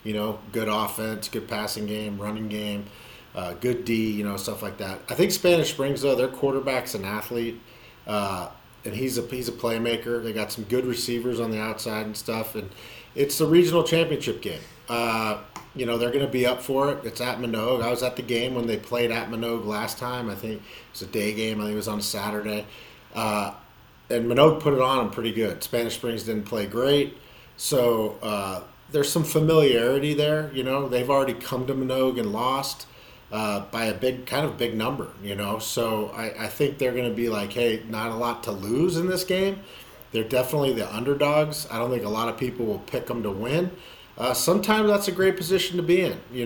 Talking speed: 215 wpm